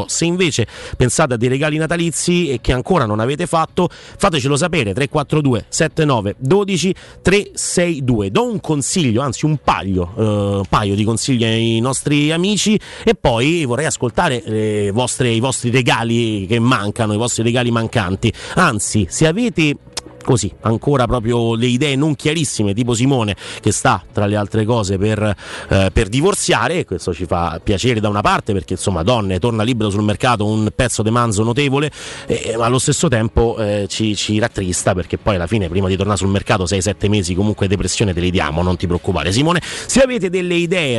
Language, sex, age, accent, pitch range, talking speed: Italian, male, 30-49, native, 105-160 Hz, 175 wpm